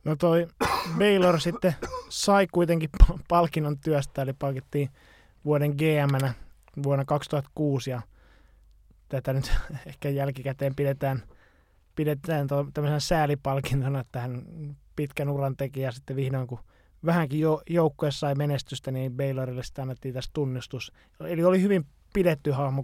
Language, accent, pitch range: Finnish, native, 125-150 Hz